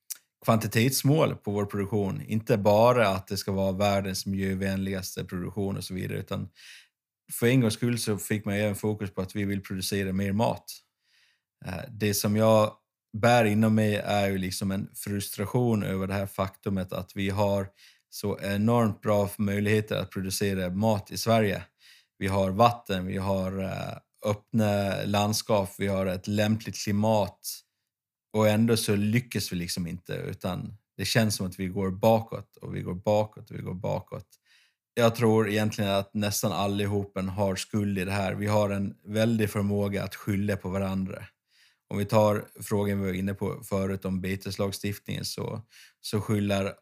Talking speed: 165 wpm